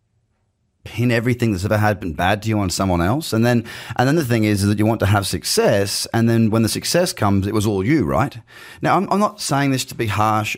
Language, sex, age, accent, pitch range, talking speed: English, male, 30-49, Australian, 95-125 Hz, 260 wpm